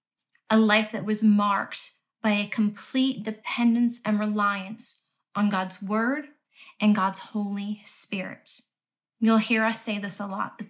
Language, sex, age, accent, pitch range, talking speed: English, female, 20-39, American, 205-230 Hz, 145 wpm